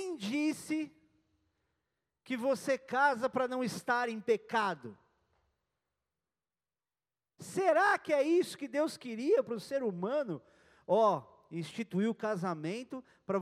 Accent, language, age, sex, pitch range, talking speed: Brazilian, Portuguese, 40-59, male, 165-270 Hz, 115 wpm